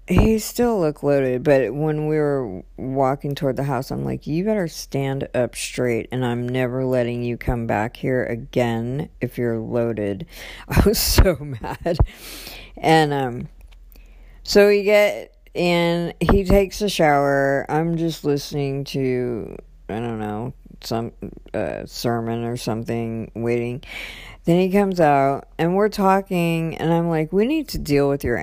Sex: female